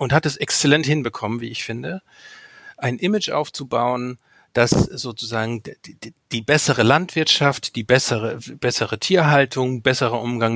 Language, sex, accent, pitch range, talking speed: German, male, German, 125-170 Hz, 135 wpm